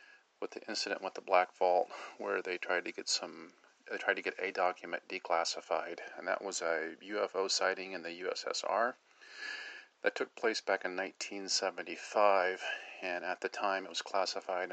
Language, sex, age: English, male, 40-59